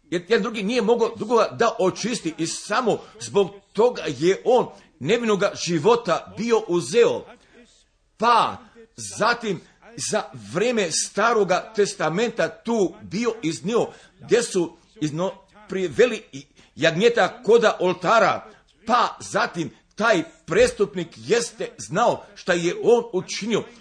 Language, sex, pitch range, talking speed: Croatian, male, 180-230 Hz, 105 wpm